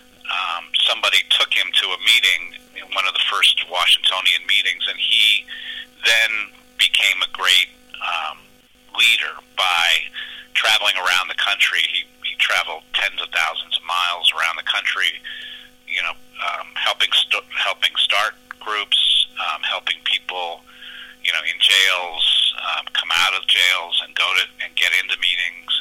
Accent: American